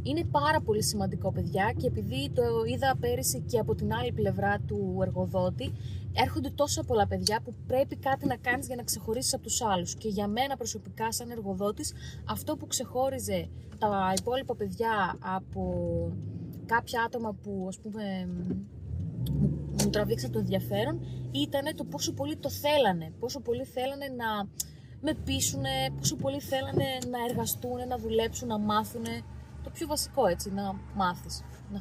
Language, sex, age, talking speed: Greek, female, 20-39, 155 wpm